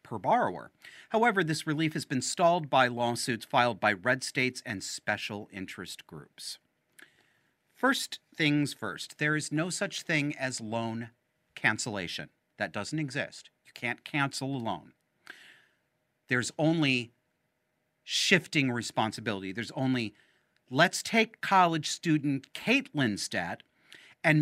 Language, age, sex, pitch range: English, 40-59, male, 125-160 Hz